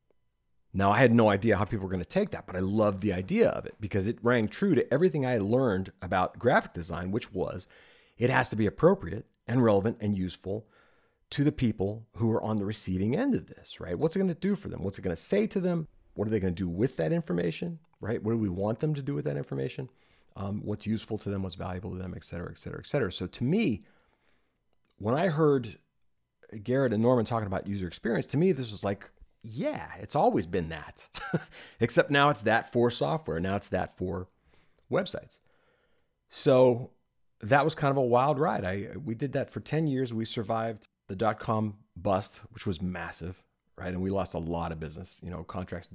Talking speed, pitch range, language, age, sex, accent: 220 wpm, 90-115 Hz, English, 40-59, male, American